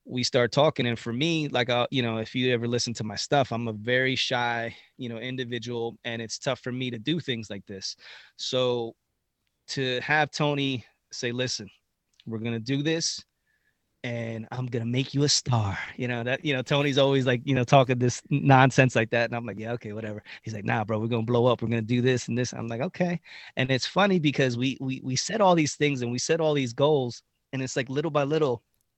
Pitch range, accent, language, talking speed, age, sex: 115-135 Hz, American, English, 230 wpm, 20-39, male